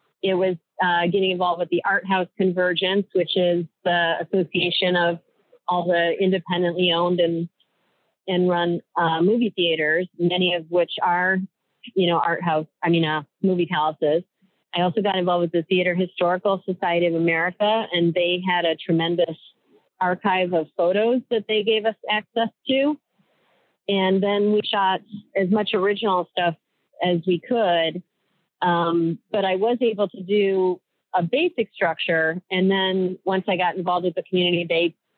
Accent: American